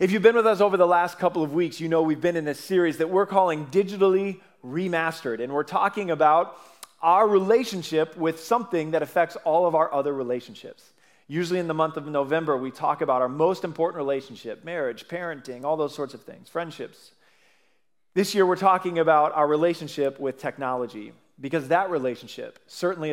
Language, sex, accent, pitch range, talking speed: English, male, American, 145-185 Hz, 185 wpm